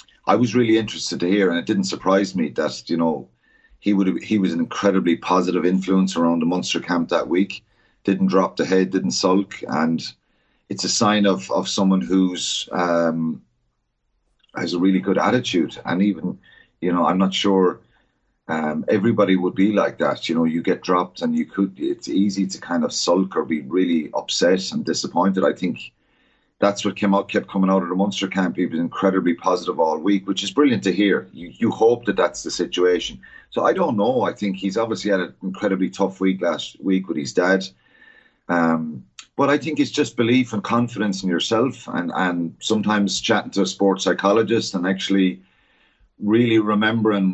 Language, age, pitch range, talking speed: English, 30-49, 90-100 Hz, 195 wpm